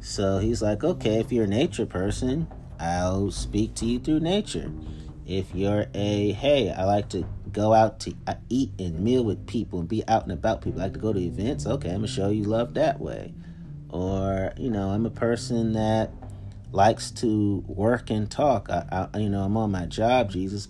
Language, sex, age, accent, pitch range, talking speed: English, male, 30-49, American, 90-110 Hz, 210 wpm